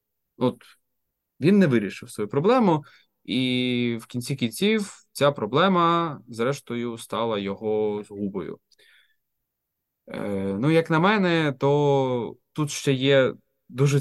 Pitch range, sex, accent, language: 110-140 Hz, male, native, Ukrainian